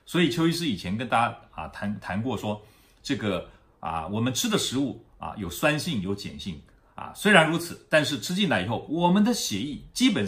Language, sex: Chinese, male